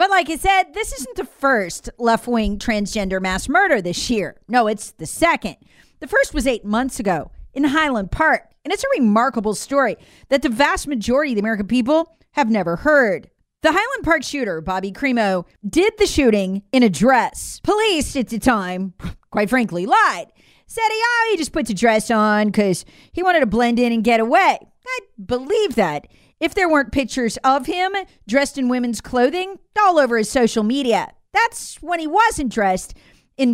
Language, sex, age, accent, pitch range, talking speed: English, female, 40-59, American, 225-325 Hz, 185 wpm